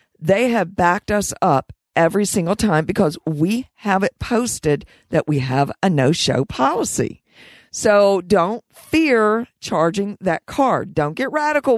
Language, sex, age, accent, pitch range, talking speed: English, female, 50-69, American, 170-235 Hz, 150 wpm